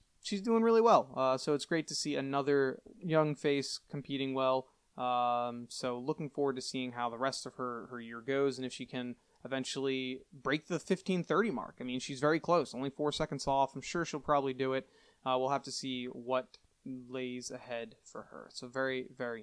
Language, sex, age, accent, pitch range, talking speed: English, male, 20-39, American, 130-155 Hz, 205 wpm